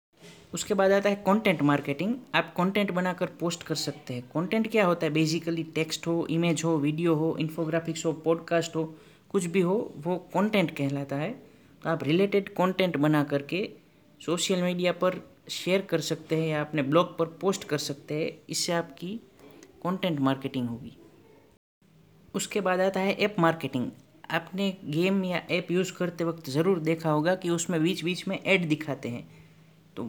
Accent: native